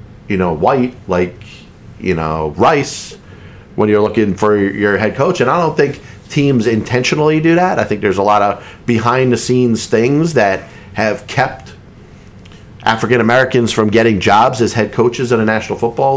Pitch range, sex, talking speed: 105-140 Hz, male, 165 wpm